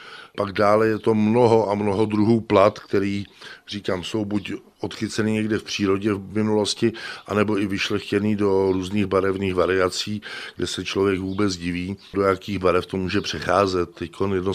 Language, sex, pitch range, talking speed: Czech, male, 95-110 Hz, 160 wpm